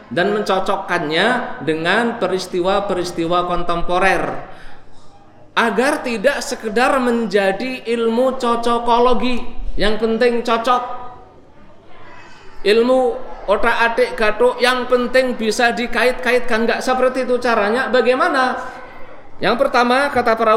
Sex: male